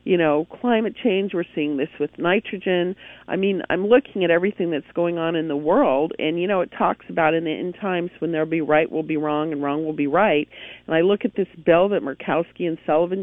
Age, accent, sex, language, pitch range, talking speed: 50-69, American, female, English, 160-200 Hz, 240 wpm